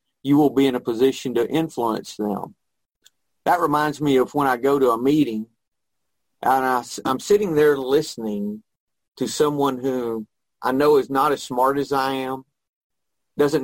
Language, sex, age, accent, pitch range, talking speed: English, male, 40-59, American, 125-160 Hz, 165 wpm